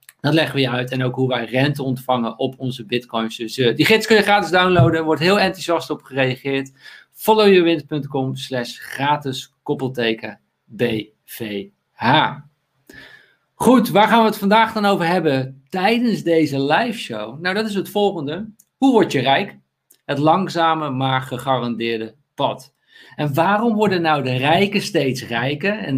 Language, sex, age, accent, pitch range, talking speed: Dutch, male, 50-69, Dutch, 130-185 Hz, 150 wpm